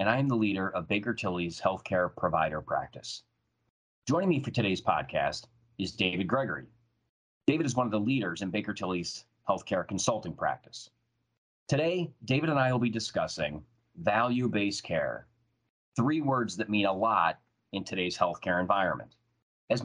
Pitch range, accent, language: 100-125 Hz, American, English